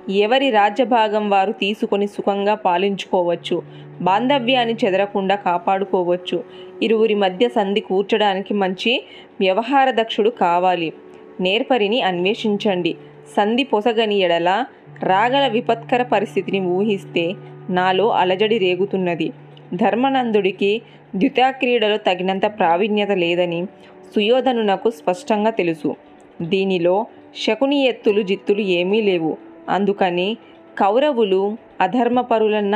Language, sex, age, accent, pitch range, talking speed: Telugu, female, 20-39, native, 185-225 Hz, 85 wpm